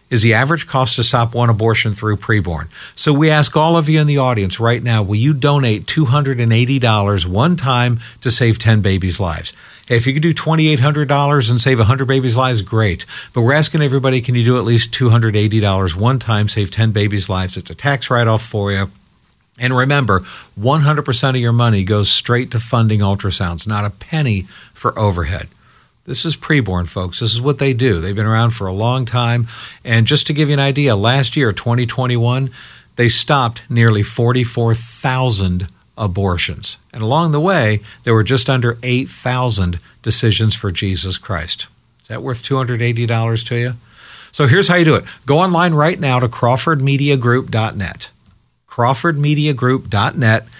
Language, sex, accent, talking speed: English, male, American, 170 wpm